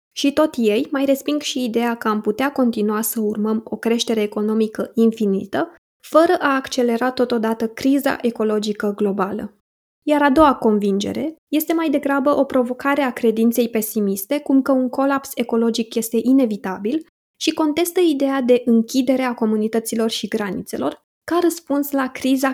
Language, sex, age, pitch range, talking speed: Romanian, female, 20-39, 220-280 Hz, 150 wpm